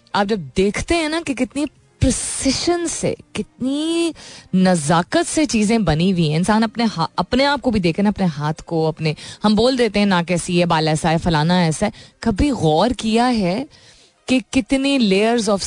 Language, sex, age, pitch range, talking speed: Hindi, female, 20-39, 175-245 Hz, 185 wpm